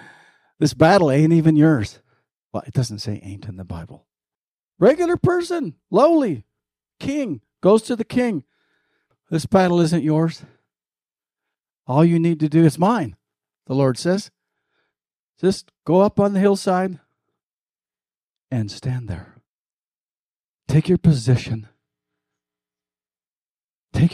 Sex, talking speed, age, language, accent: male, 120 wpm, 50-69, English, American